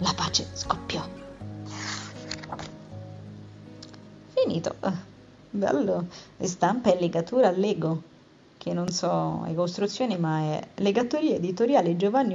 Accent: native